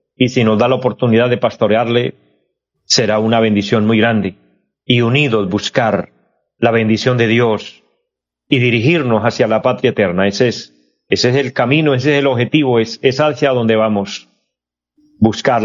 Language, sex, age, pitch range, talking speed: Spanish, male, 40-59, 105-140 Hz, 160 wpm